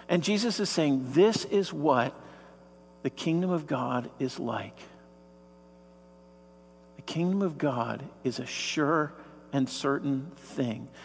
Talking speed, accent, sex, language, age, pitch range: 125 wpm, American, male, English, 50-69, 135-185 Hz